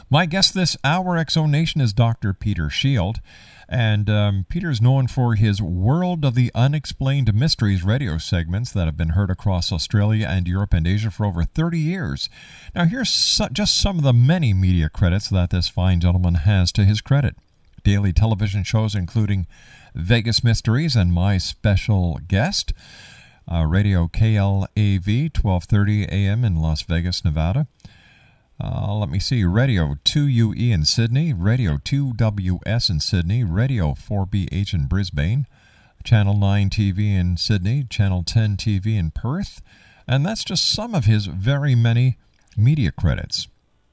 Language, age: English, 50-69